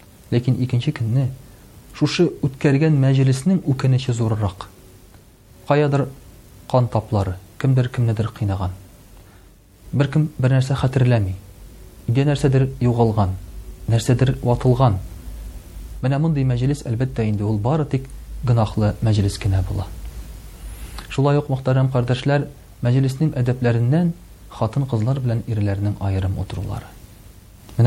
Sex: male